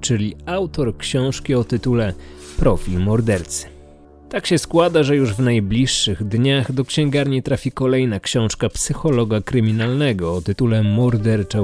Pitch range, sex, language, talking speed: 95-130 Hz, male, Polish, 130 wpm